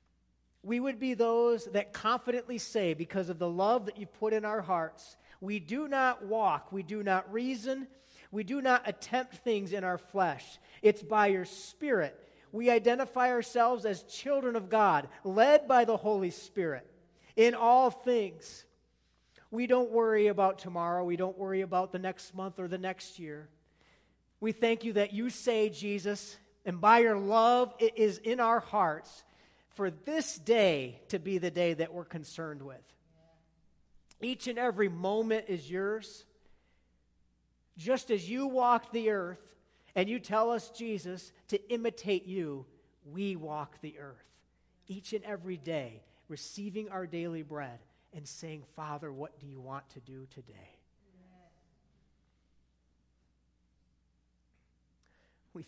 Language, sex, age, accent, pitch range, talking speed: English, male, 40-59, American, 145-225 Hz, 150 wpm